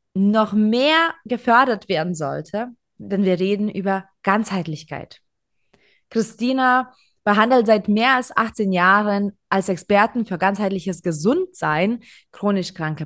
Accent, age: German, 20-39